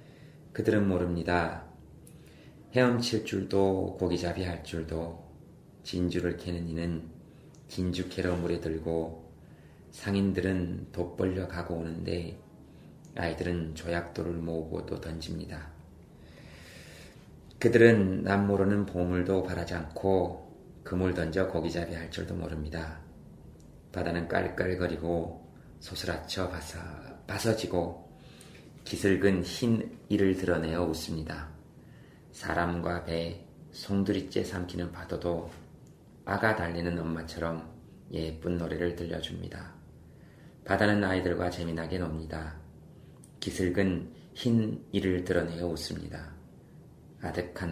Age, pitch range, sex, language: 30-49, 80-95 Hz, male, Korean